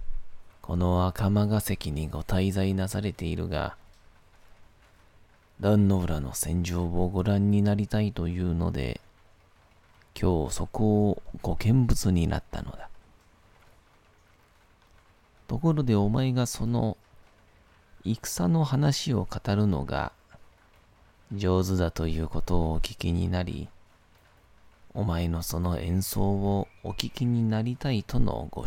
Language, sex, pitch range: Japanese, male, 85-105 Hz